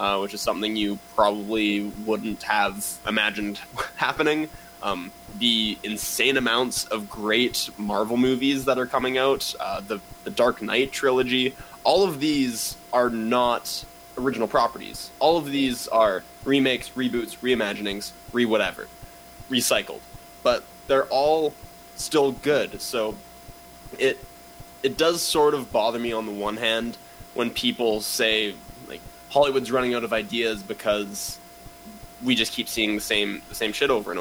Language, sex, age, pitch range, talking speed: English, male, 20-39, 105-135 Hz, 140 wpm